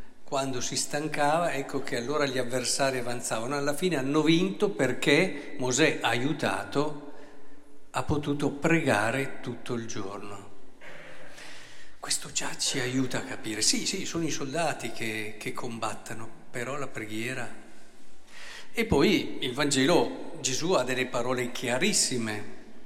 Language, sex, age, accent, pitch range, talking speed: Italian, male, 50-69, native, 110-150 Hz, 125 wpm